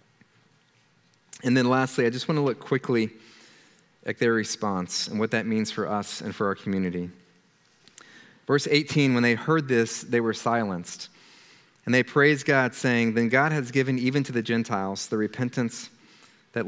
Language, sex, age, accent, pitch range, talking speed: English, male, 40-59, American, 115-145 Hz, 170 wpm